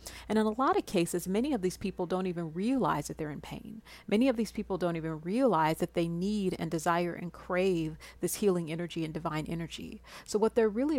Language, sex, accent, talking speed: English, female, American, 225 wpm